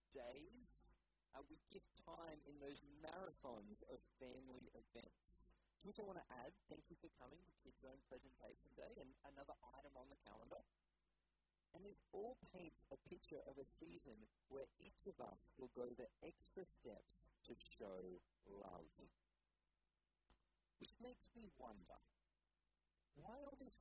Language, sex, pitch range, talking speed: English, male, 135-195 Hz, 150 wpm